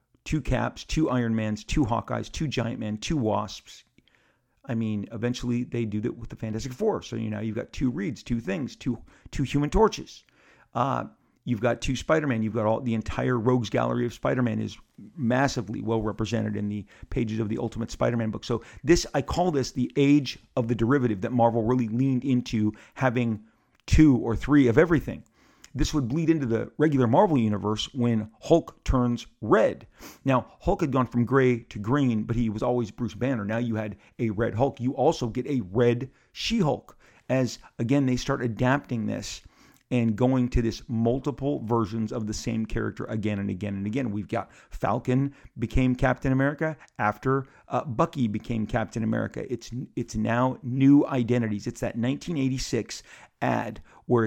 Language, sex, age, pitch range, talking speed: English, male, 40-59, 110-130 Hz, 180 wpm